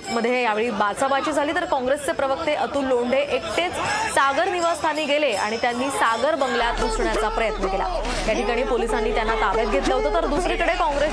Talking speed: 100 wpm